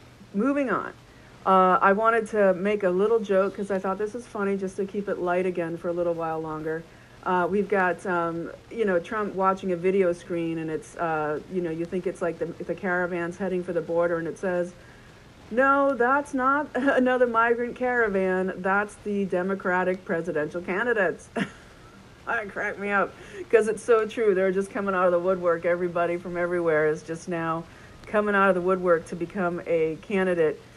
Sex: female